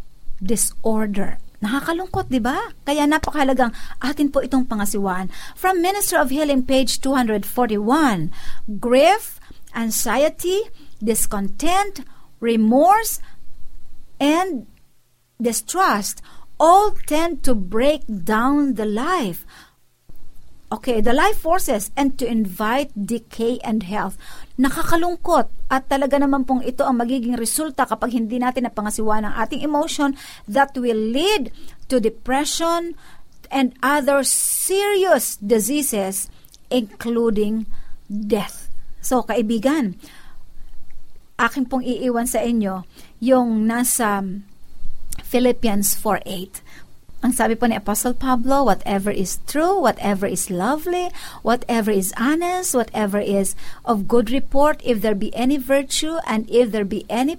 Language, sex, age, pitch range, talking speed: Filipino, female, 50-69, 215-285 Hz, 110 wpm